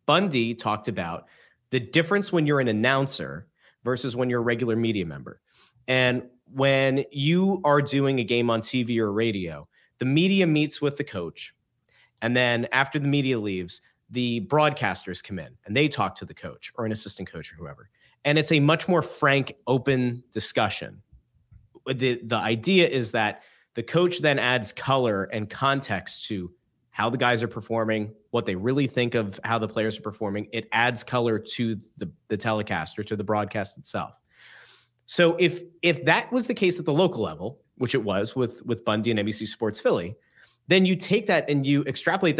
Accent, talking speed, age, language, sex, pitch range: American, 185 wpm, 30-49, English, male, 110-145 Hz